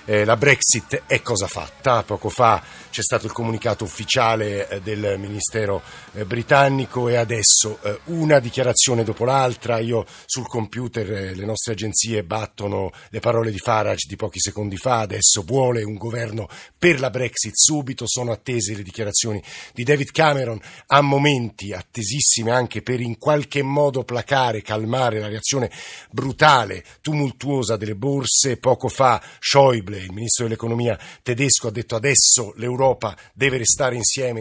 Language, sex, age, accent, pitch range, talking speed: Italian, male, 50-69, native, 105-125 Hz, 150 wpm